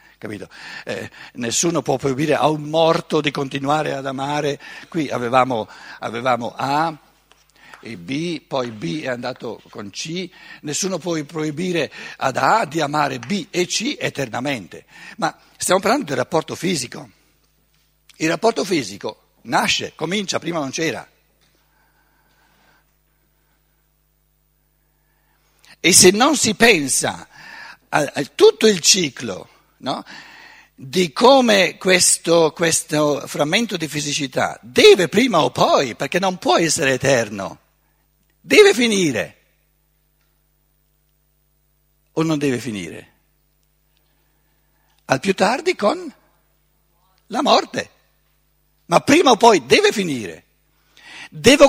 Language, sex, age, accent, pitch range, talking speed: Italian, male, 60-79, native, 150-185 Hz, 110 wpm